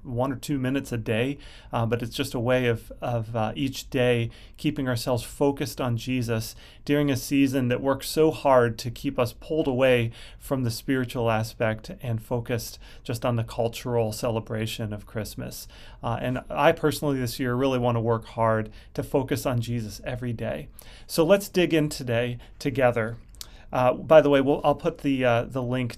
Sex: male